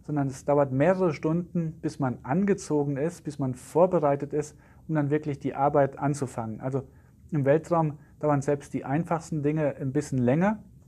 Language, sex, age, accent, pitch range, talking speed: German, male, 40-59, German, 140-165 Hz, 165 wpm